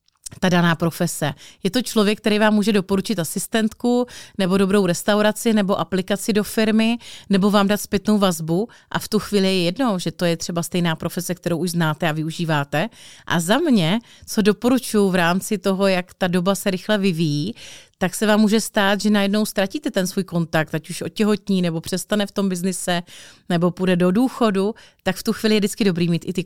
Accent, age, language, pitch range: native, 30-49, Czech, 175-215 Hz